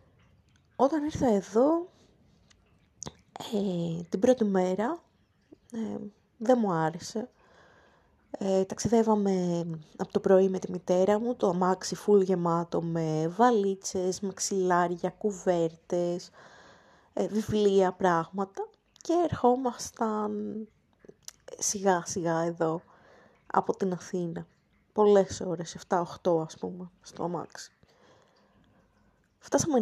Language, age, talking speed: Greek, 20-39, 95 wpm